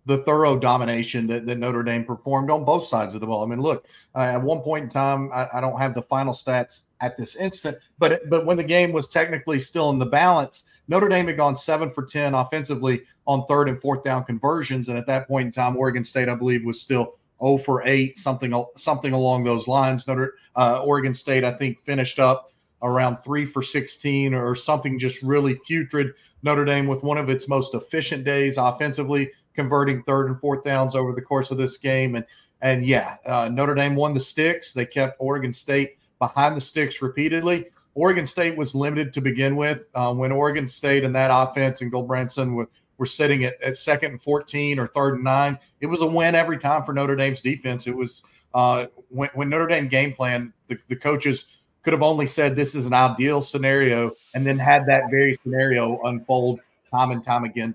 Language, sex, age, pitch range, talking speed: English, male, 40-59, 125-145 Hz, 205 wpm